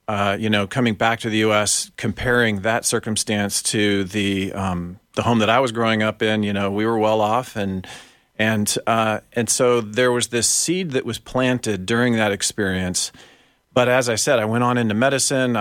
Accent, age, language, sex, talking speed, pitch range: American, 40-59, English, male, 200 wpm, 105-120 Hz